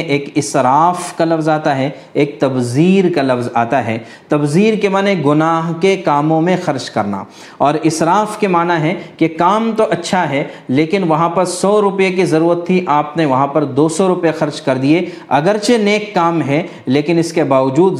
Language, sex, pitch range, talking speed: Urdu, male, 140-180 Hz, 185 wpm